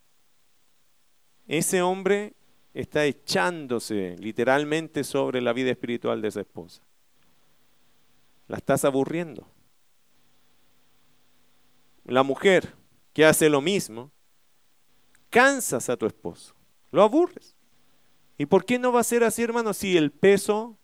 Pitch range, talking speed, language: 140-215 Hz, 110 wpm, Spanish